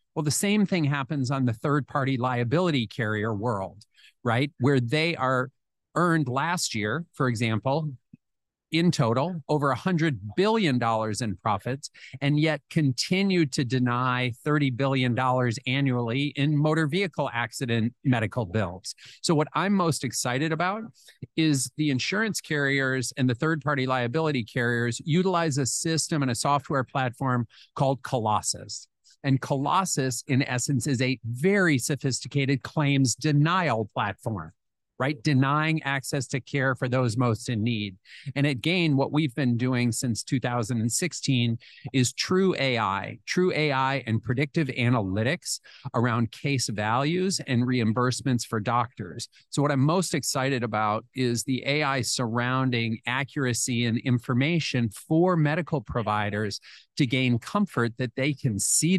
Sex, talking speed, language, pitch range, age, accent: male, 135 wpm, English, 120-150 Hz, 40-59, American